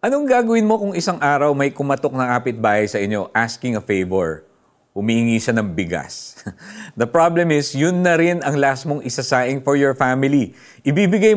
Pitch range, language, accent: 110-160 Hz, Filipino, native